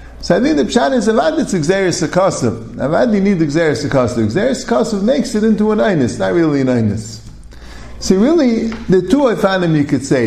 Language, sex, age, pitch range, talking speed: English, male, 50-69, 125-200 Hz, 210 wpm